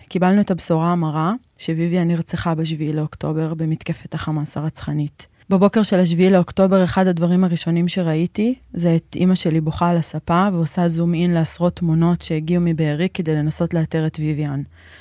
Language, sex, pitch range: Hebrew, female, 160-180 Hz